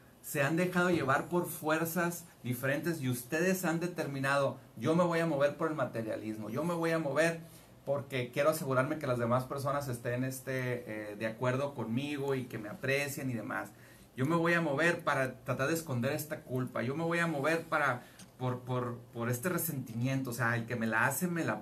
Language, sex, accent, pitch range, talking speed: Spanish, male, Mexican, 130-180 Hz, 205 wpm